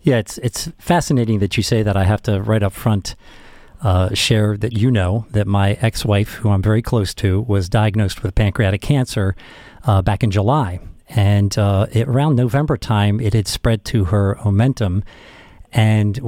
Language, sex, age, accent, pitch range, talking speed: English, male, 50-69, American, 105-125 Hz, 180 wpm